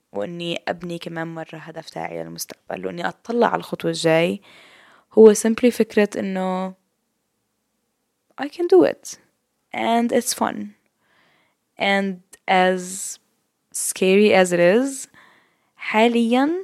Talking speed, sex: 110 wpm, female